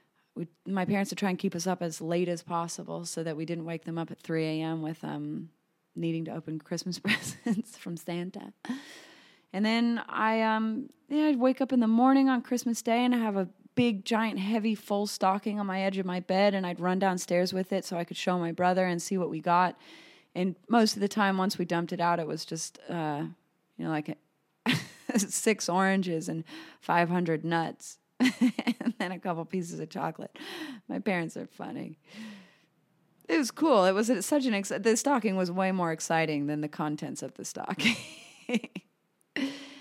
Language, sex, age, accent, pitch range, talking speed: English, female, 30-49, American, 170-230 Hz, 200 wpm